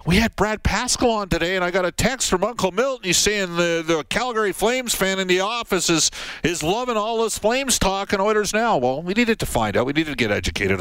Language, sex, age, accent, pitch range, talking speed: English, male, 50-69, American, 130-180 Hz, 250 wpm